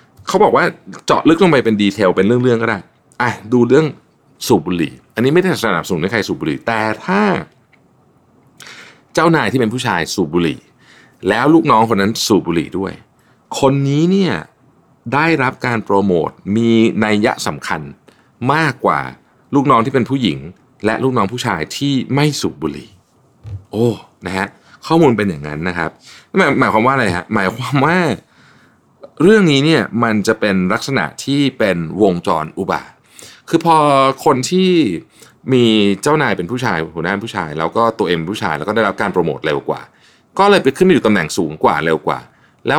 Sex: male